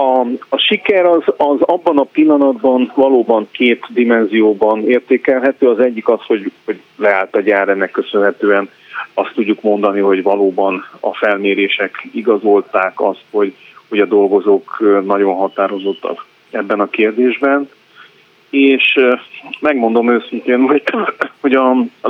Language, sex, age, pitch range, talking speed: Hungarian, male, 40-59, 110-130 Hz, 120 wpm